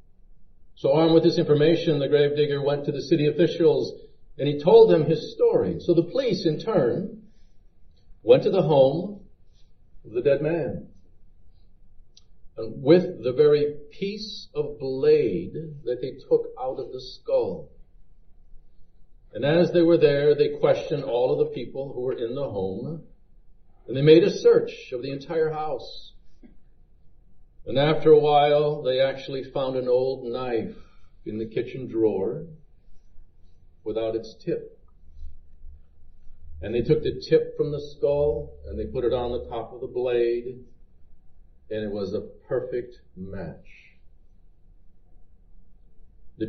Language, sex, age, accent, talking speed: English, male, 50-69, American, 145 wpm